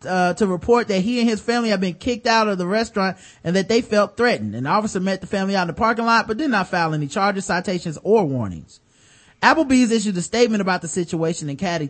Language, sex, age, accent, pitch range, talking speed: English, male, 30-49, American, 170-225 Hz, 240 wpm